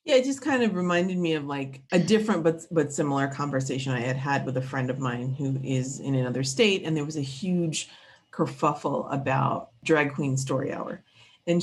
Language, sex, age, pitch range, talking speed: English, female, 30-49, 140-215 Hz, 205 wpm